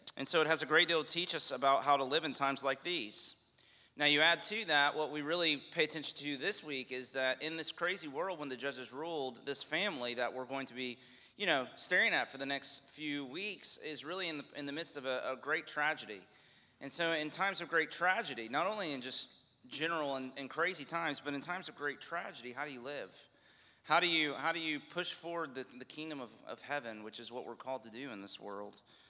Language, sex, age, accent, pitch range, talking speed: English, male, 30-49, American, 130-160 Hz, 245 wpm